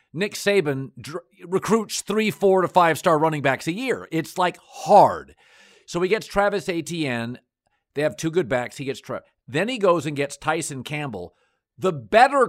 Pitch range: 135-185 Hz